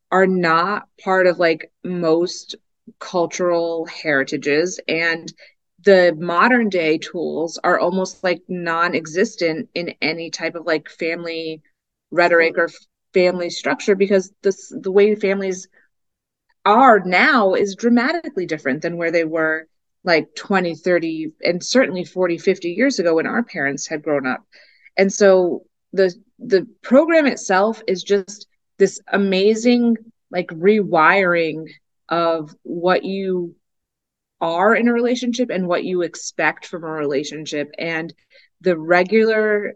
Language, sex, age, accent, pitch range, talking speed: English, female, 30-49, American, 165-200 Hz, 130 wpm